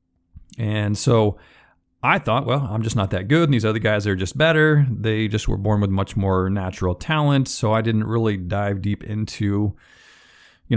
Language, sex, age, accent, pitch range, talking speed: English, male, 40-59, American, 100-125 Hz, 190 wpm